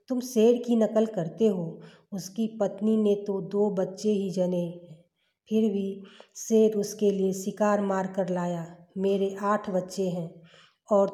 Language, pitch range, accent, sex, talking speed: Hindi, 180-210 Hz, native, female, 150 wpm